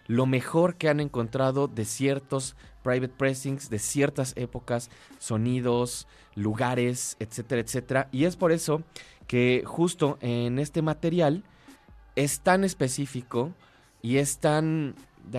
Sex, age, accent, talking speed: male, 20-39, Mexican, 125 wpm